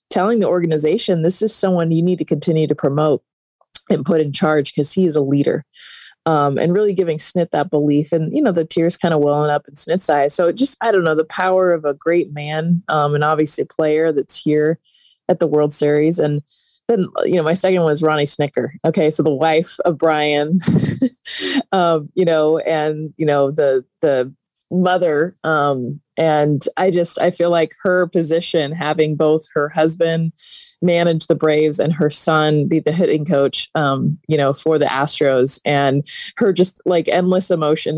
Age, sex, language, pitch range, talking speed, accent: 20-39, female, English, 150-190 Hz, 195 wpm, American